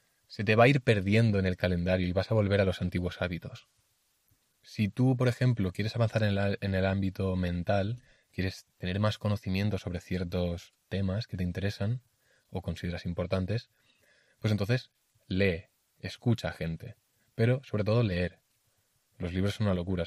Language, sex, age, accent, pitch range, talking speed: Spanish, male, 20-39, Spanish, 95-115 Hz, 170 wpm